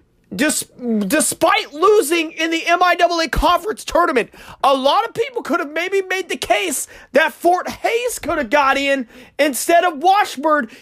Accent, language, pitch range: American, English, 285-360 Hz